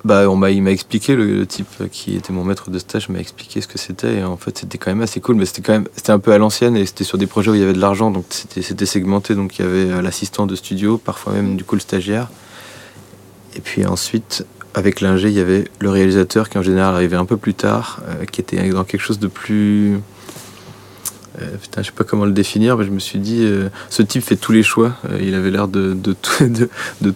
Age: 20-39